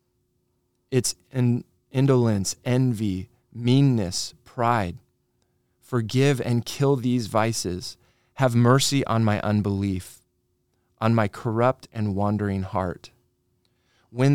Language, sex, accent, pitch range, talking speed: English, male, American, 110-130 Hz, 95 wpm